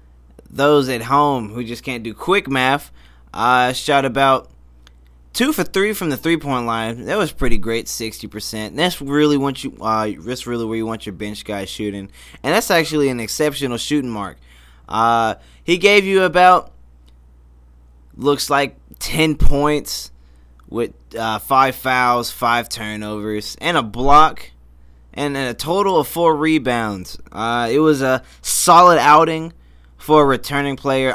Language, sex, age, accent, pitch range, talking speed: English, male, 20-39, American, 100-145 Hz, 155 wpm